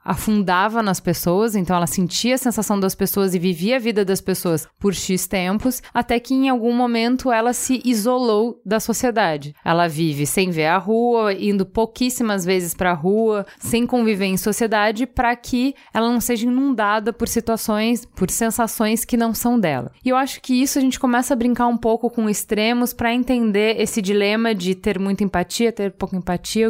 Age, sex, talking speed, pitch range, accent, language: 20-39, female, 185 wpm, 190-240 Hz, Brazilian, Portuguese